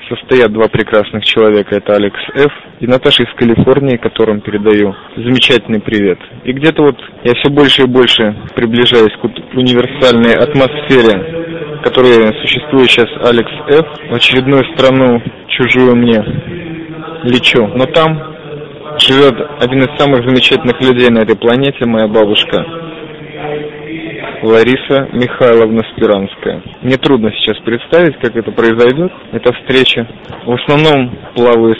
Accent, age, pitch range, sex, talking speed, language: native, 20-39, 115-140 Hz, male, 125 wpm, Russian